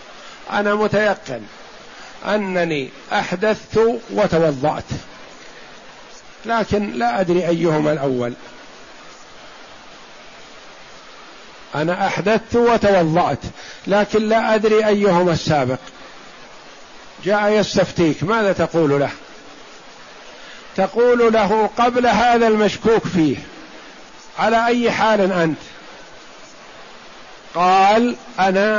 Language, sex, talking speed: Arabic, male, 75 wpm